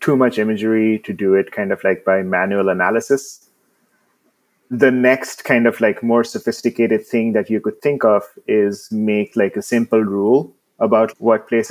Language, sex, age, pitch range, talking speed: English, male, 30-49, 105-125 Hz, 175 wpm